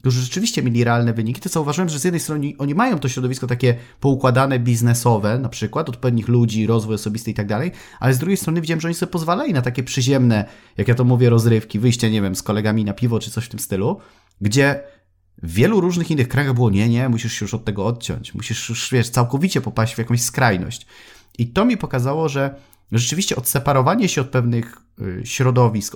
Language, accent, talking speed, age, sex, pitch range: Polish, native, 210 wpm, 30-49, male, 110-140 Hz